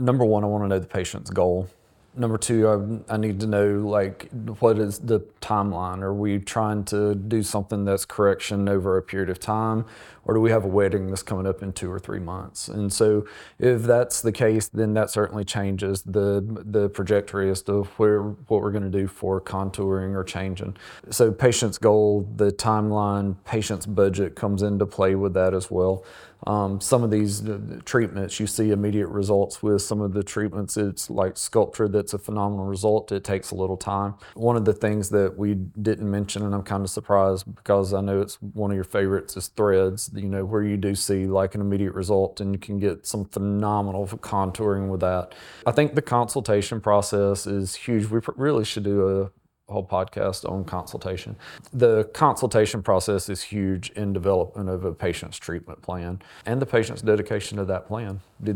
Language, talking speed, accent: English, 195 wpm, American